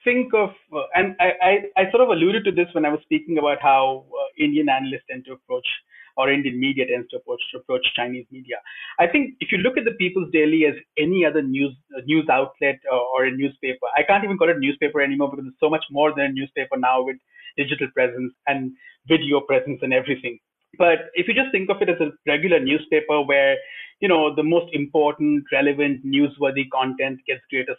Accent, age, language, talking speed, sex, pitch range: Indian, 30-49, English, 205 wpm, male, 135-165 Hz